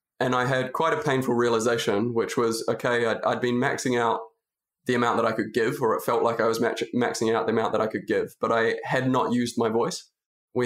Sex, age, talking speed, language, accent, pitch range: male, 20-39, 240 wpm, English, Australian, 115-125 Hz